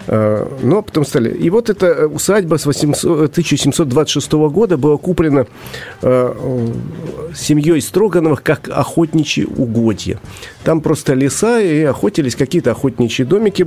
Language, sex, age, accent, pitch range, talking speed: Russian, male, 40-59, native, 130-165 Hz, 105 wpm